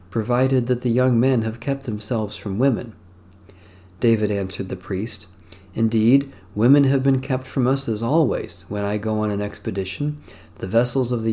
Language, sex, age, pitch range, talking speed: English, male, 40-59, 95-130 Hz, 175 wpm